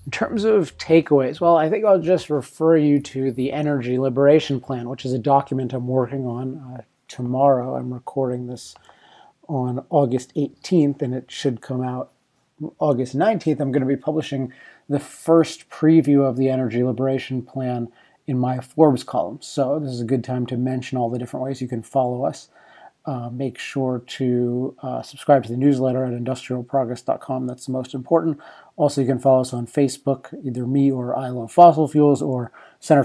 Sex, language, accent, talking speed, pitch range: male, English, American, 185 wpm, 125-145 Hz